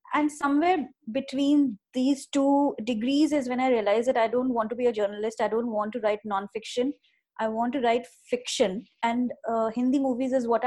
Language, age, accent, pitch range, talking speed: English, 20-39, Indian, 220-270 Hz, 195 wpm